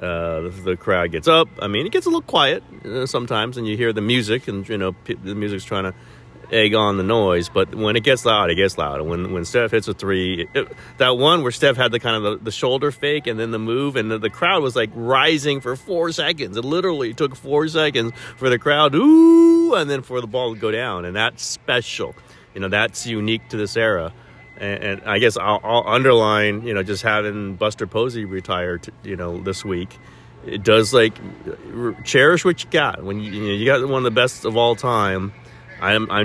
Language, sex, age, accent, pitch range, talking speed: English, male, 30-49, American, 100-125 Hz, 225 wpm